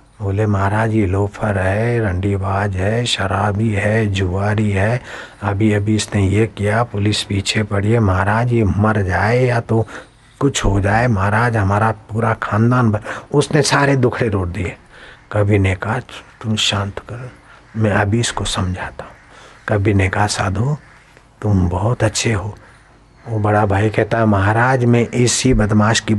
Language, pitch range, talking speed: Hindi, 105-130 Hz, 150 wpm